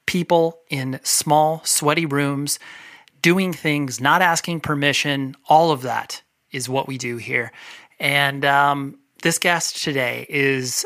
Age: 30-49